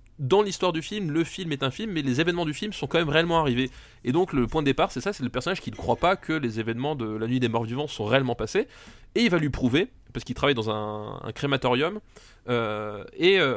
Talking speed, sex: 270 wpm, male